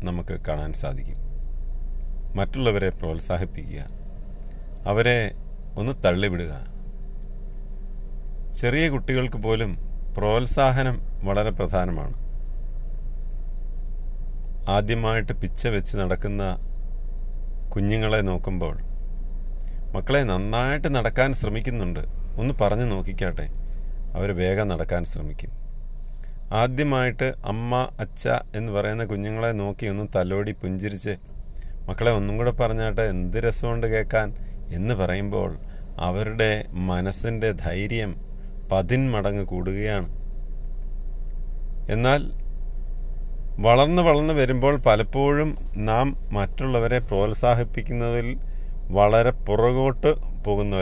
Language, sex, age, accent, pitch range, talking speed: English, male, 40-59, Indian, 90-115 Hz, 80 wpm